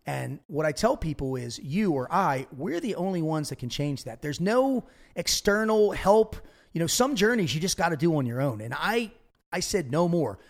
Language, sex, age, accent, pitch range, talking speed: English, male, 30-49, American, 140-190 Hz, 225 wpm